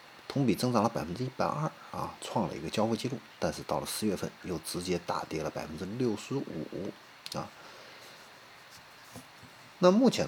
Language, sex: Chinese, male